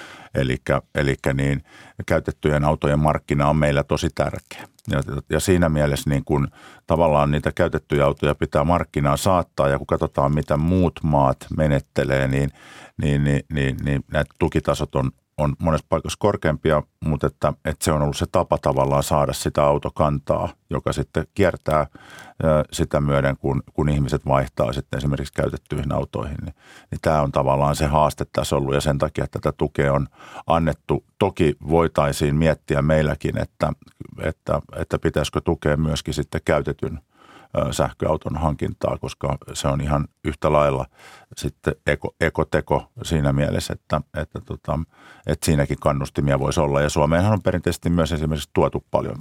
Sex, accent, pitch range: male, native, 70-80 Hz